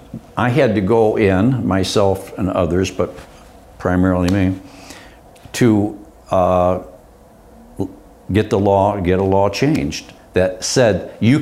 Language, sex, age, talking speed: English, male, 60-79, 120 wpm